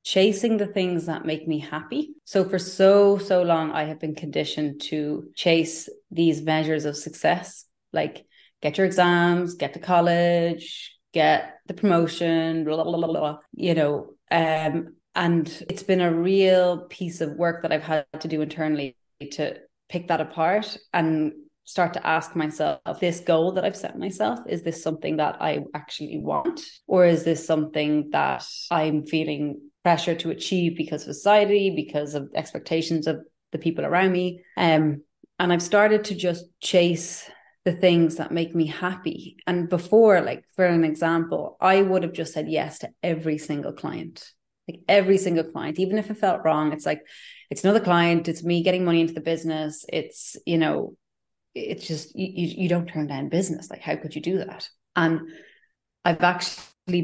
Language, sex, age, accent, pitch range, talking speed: English, female, 20-39, Irish, 155-180 Hz, 170 wpm